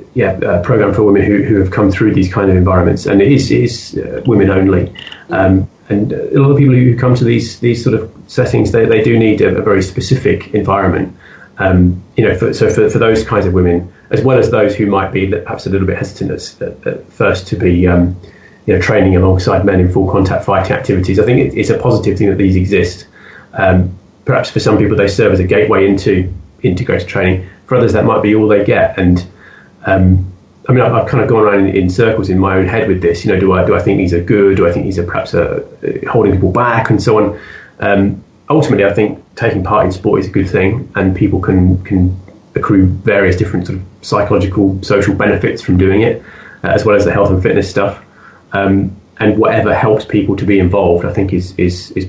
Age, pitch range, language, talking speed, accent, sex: 30-49, 95-105 Hz, English, 235 wpm, British, male